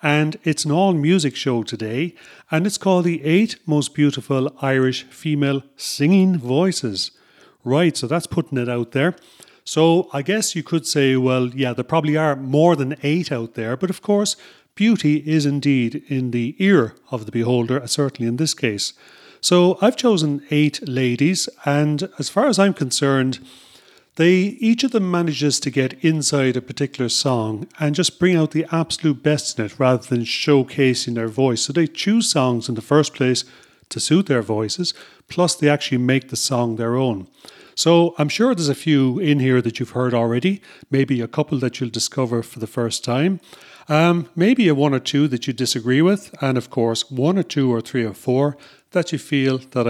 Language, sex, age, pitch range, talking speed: English, male, 40-59, 125-165 Hz, 190 wpm